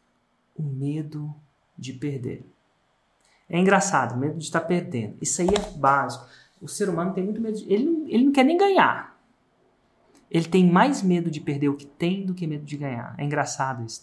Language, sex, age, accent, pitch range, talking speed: Portuguese, male, 30-49, Brazilian, 130-180 Hz, 195 wpm